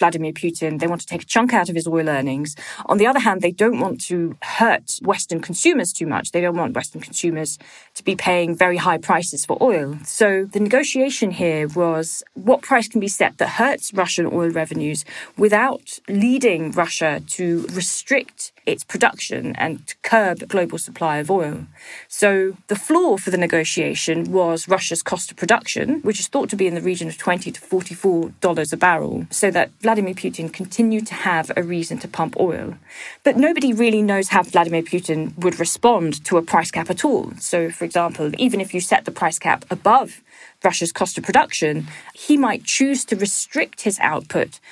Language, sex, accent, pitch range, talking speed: English, female, British, 170-215 Hz, 190 wpm